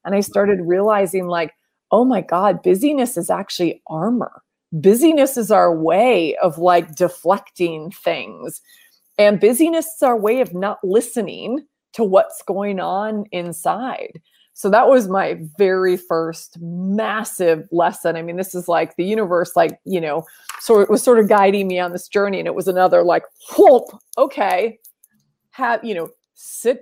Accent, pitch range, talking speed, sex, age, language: American, 170-210 Hz, 160 wpm, female, 30-49, English